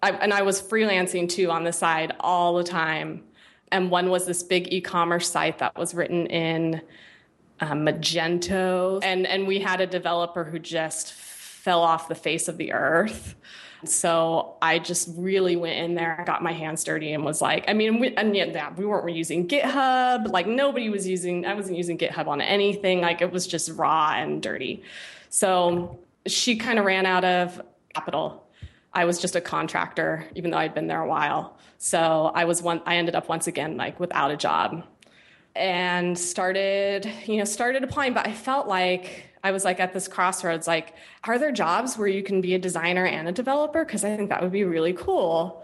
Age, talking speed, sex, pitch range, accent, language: 20-39, 195 wpm, female, 170-195 Hz, American, English